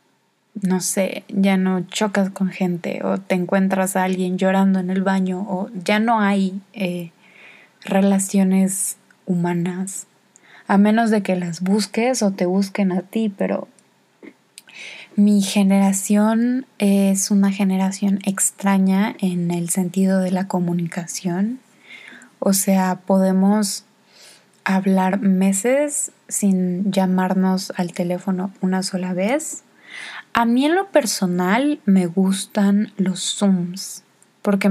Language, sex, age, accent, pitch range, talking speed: Spanish, female, 20-39, Mexican, 185-210 Hz, 120 wpm